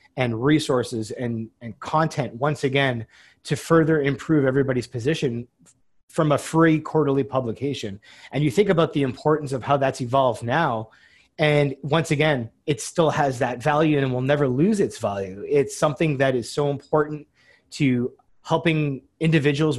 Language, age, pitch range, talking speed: English, 30-49, 130-150 Hz, 155 wpm